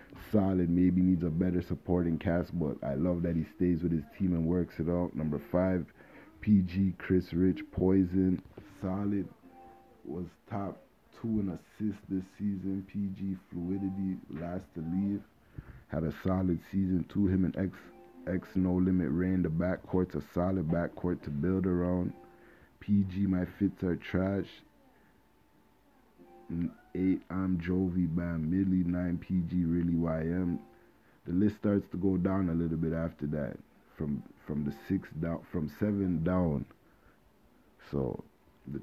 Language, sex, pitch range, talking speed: English, male, 85-95 Hz, 145 wpm